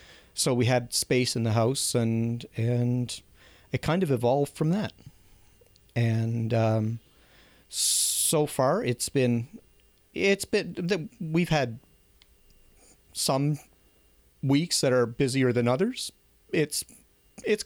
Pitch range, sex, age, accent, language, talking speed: 110-145 Hz, male, 40-59, American, English, 115 wpm